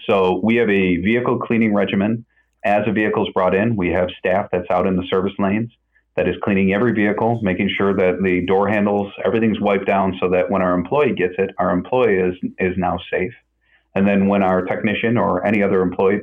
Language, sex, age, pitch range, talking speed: English, male, 40-59, 90-100 Hz, 210 wpm